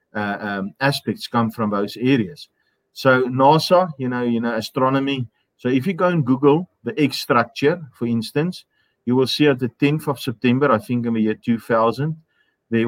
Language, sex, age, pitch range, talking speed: English, male, 40-59, 115-140 Hz, 185 wpm